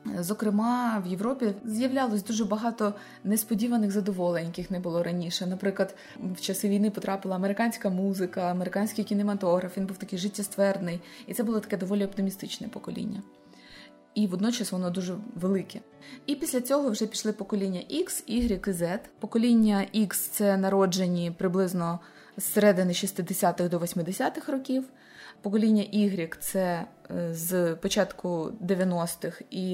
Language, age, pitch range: Ukrainian, 20-39, 185-225 Hz